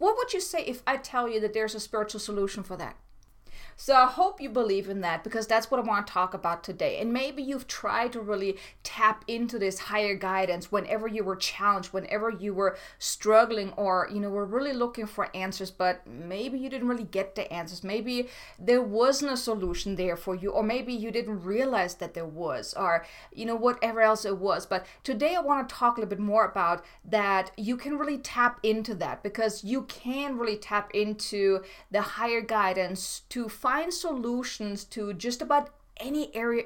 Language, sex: English, female